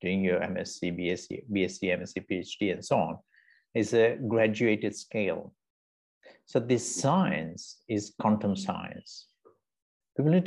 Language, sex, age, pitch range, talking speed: English, male, 50-69, 95-115 Hz, 125 wpm